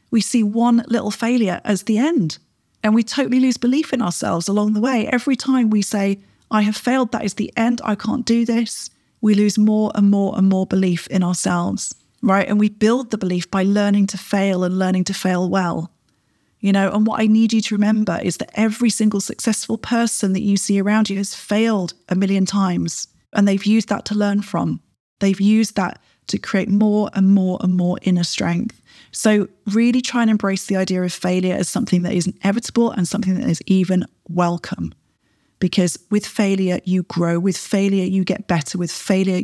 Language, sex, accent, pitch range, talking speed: English, female, British, 180-220 Hz, 205 wpm